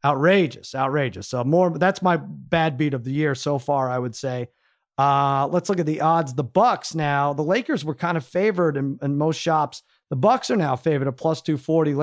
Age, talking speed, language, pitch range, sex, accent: 40-59, 215 wpm, English, 135-170 Hz, male, American